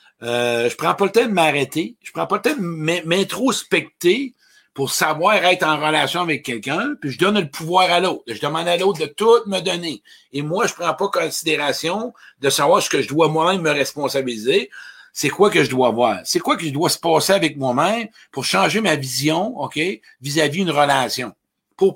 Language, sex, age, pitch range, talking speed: French, male, 60-79, 135-185 Hz, 210 wpm